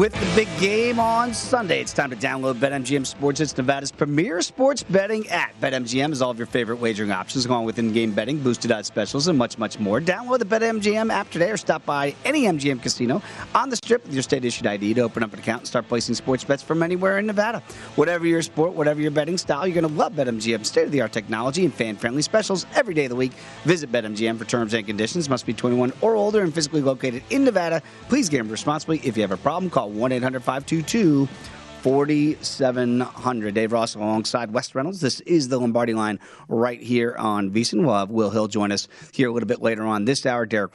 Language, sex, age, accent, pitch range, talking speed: English, male, 40-59, American, 115-170 Hz, 225 wpm